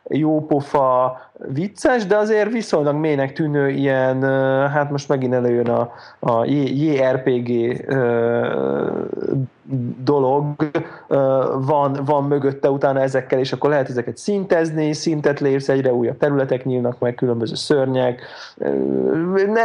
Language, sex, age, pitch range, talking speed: Hungarian, male, 30-49, 120-140 Hz, 115 wpm